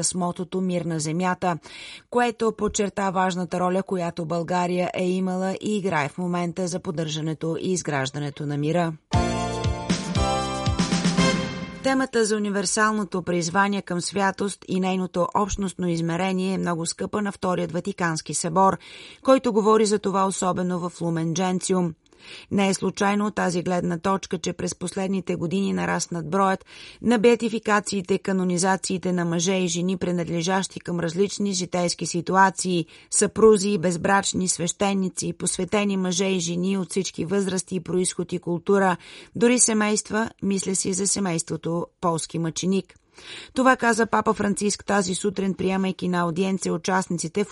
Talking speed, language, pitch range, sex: 135 wpm, Bulgarian, 175-195 Hz, female